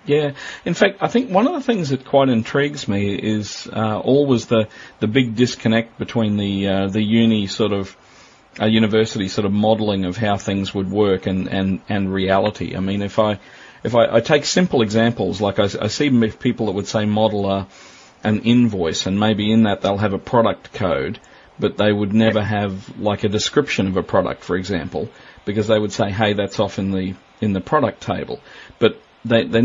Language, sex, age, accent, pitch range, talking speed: English, male, 40-59, Australian, 100-115 Hz, 205 wpm